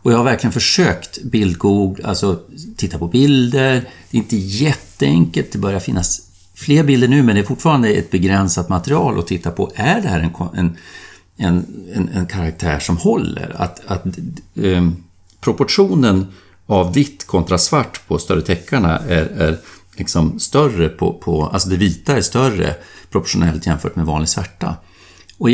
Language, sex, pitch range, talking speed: Swedish, male, 85-120 Hz, 160 wpm